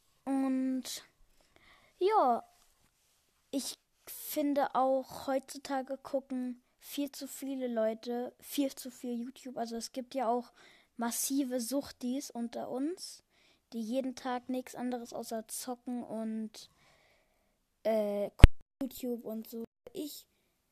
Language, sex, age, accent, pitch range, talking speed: German, female, 20-39, German, 245-290 Hz, 105 wpm